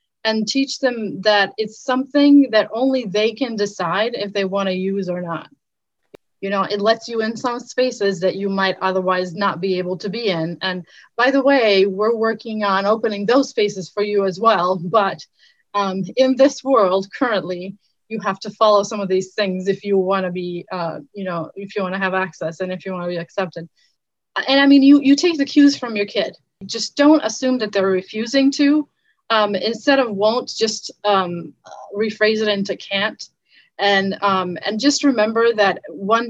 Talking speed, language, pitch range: 190 wpm, English, 195-230 Hz